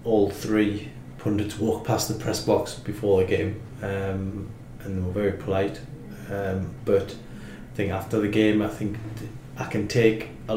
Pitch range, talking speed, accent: 100-120 Hz, 170 wpm, British